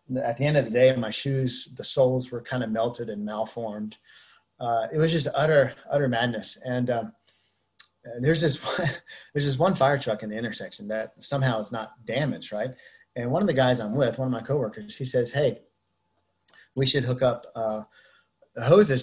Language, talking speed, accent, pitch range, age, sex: English, 195 wpm, American, 115-145 Hz, 30-49, male